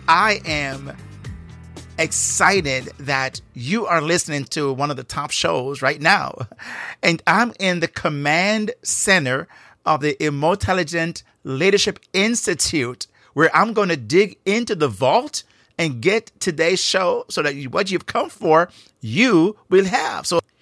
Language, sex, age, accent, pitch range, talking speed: English, male, 50-69, American, 125-165 Hz, 140 wpm